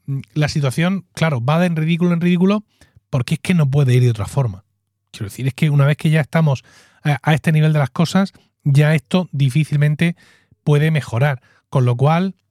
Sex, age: male, 30-49